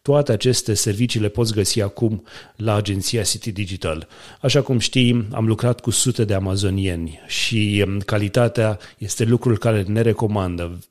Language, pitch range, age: Romanian, 105-120 Hz, 30-49